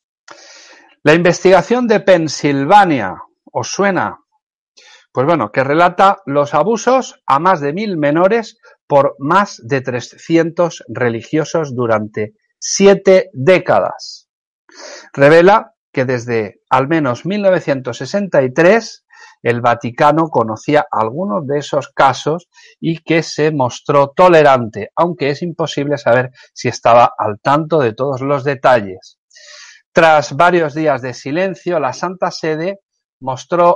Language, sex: Spanish, male